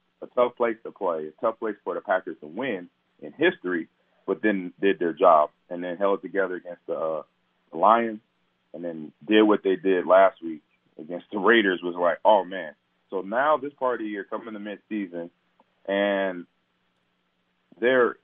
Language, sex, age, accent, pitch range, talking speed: English, male, 30-49, American, 85-110 Hz, 185 wpm